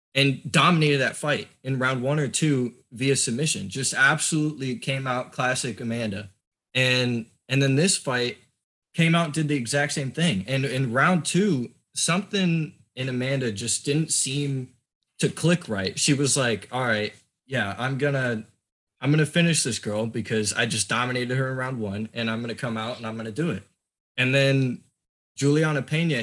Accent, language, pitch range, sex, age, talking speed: American, English, 120-150 Hz, male, 20-39, 175 wpm